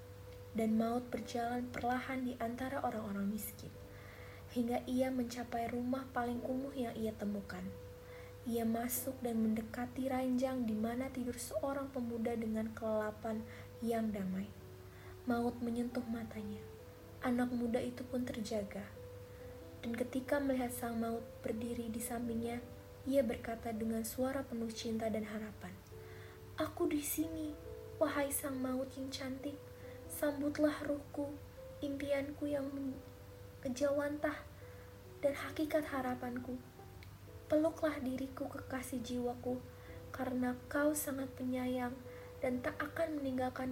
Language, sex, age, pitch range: Indonesian, female, 20-39, 225-270 Hz